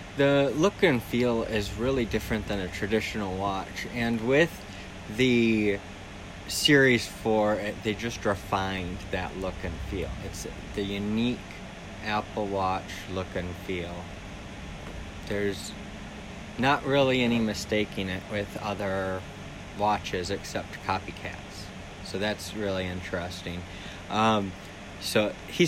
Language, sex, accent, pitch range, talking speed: English, male, American, 95-105 Hz, 115 wpm